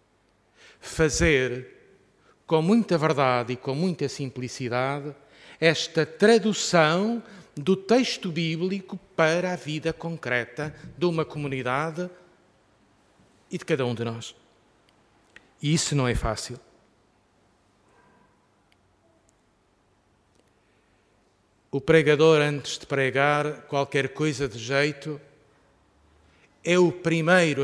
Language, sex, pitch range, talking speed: Portuguese, male, 125-165 Hz, 95 wpm